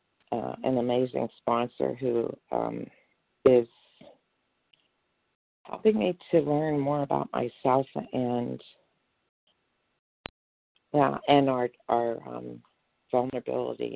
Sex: female